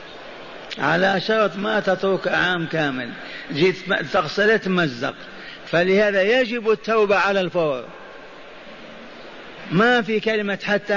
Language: Arabic